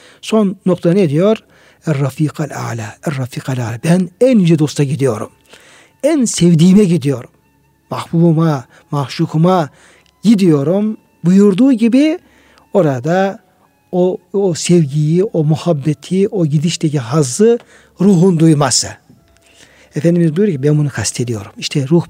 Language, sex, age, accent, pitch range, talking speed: Turkish, male, 60-79, native, 150-185 Hz, 105 wpm